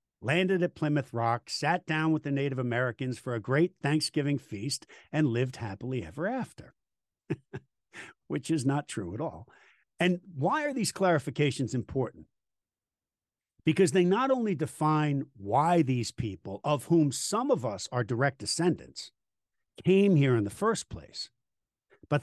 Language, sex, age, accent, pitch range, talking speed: English, male, 50-69, American, 125-175 Hz, 150 wpm